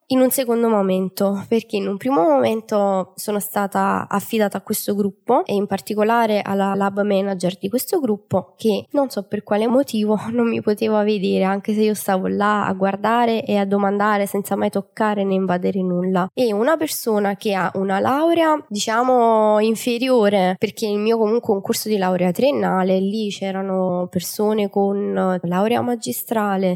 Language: Italian